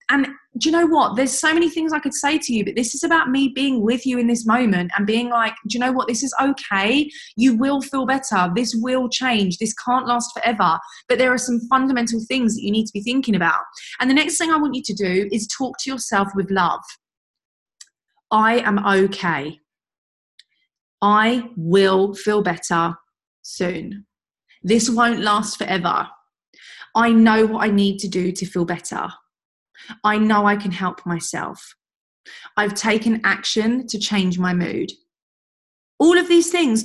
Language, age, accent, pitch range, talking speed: English, 20-39, British, 205-270 Hz, 185 wpm